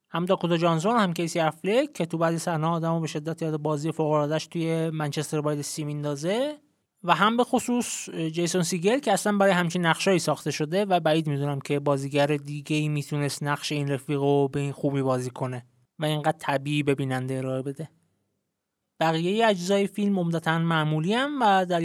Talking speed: 175 wpm